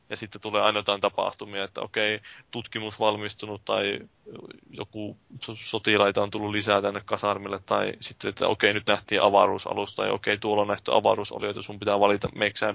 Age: 20-39